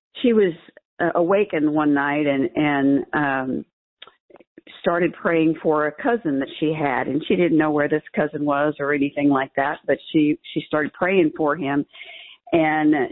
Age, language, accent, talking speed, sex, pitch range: 50-69, English, American, 170 wpm, female, 155-200 Hz